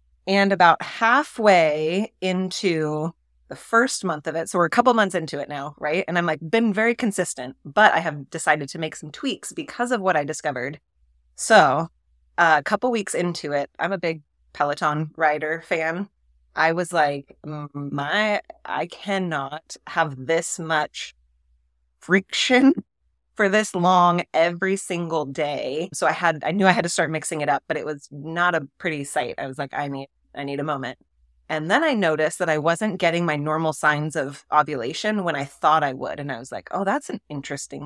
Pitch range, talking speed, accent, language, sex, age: 145-180 Hz, 190 wpm, American, English, female, 30-49